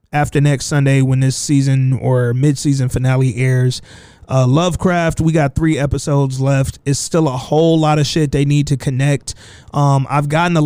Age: 20-39